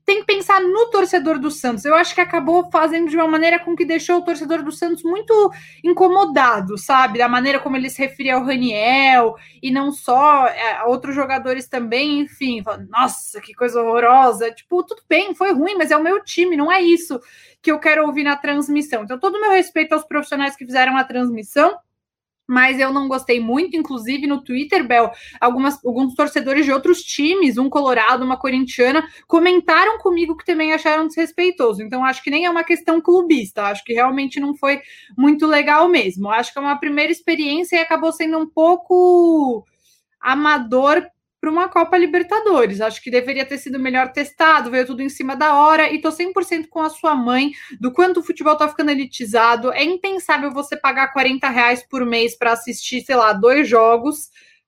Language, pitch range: Portuguese, 250-330 Hz